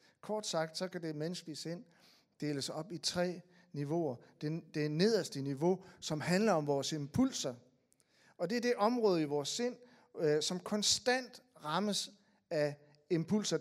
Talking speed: 155 wpm